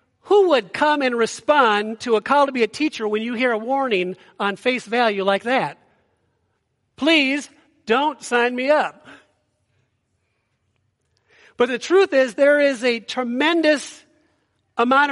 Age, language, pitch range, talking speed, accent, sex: 50-69, English, 225-310 Hz, 145 wpm, American, male